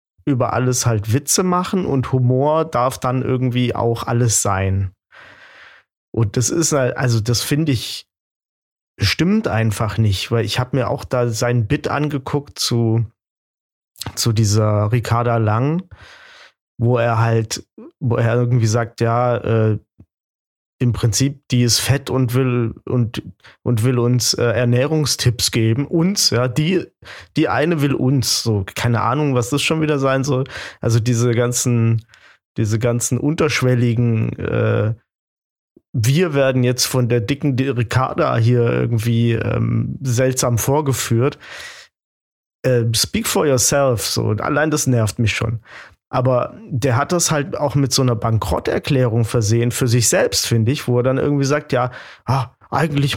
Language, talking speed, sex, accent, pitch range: German, 145 wpm, male, German, 115-140 Hz